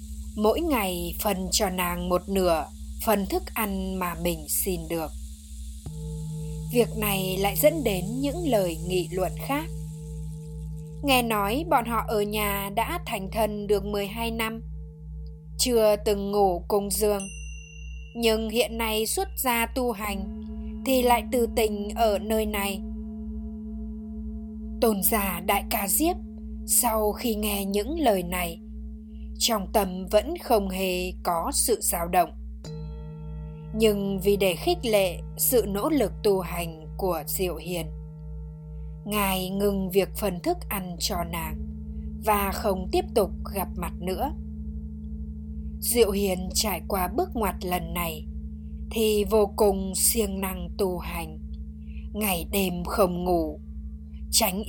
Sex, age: female, 10-29